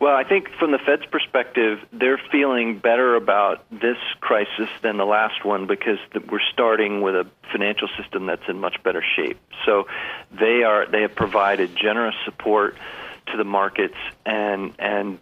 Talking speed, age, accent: 160 wpm, 40-59, American